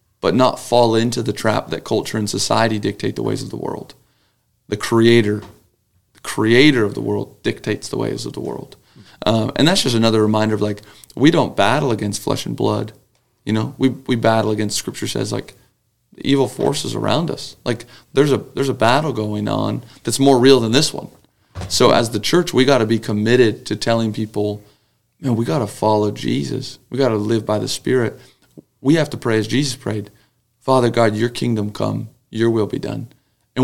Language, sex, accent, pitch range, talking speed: English, male, American, 110-135 Hz, 195 wpm